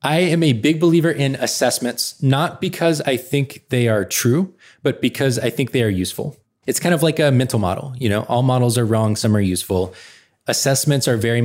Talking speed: 210 wpm